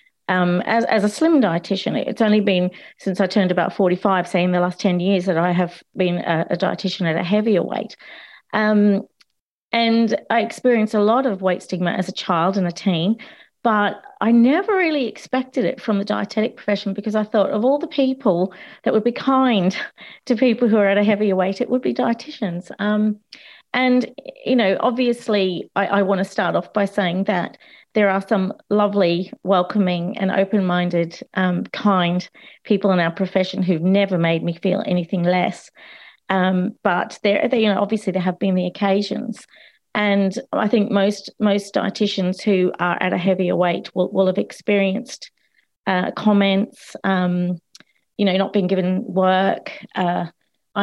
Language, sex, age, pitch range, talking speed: English, female, 40-59, 185-220 Hz, 180 wpm